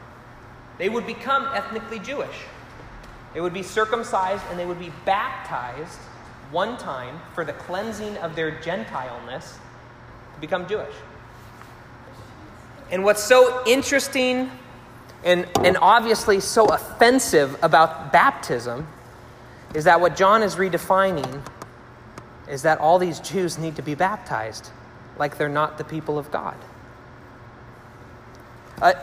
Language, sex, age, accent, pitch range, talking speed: English, male, 30-49, American, 130-205 Hz, 120 wpm